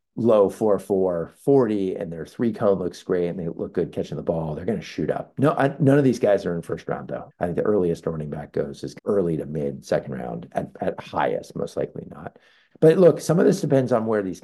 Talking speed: 240 wpm